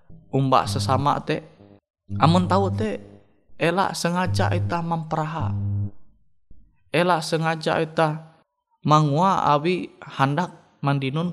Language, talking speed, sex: Indonesian, 90 wpm, male